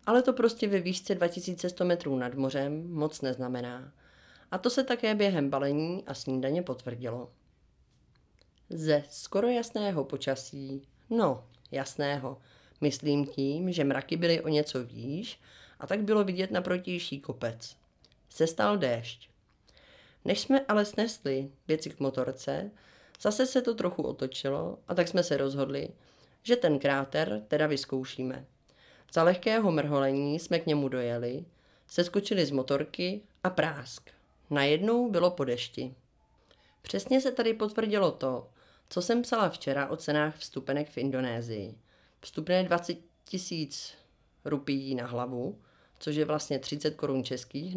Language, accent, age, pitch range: Czech, native, 30-49, 135-180 Hz